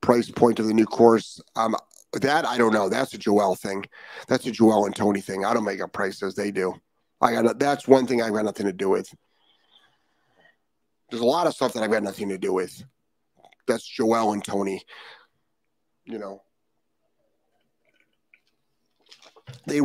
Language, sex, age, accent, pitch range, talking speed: English, male, 40-59, American, 105-130 Hz, 180 wpm